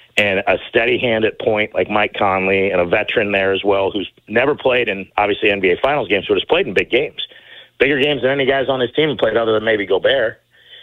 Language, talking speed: English, 240 wpm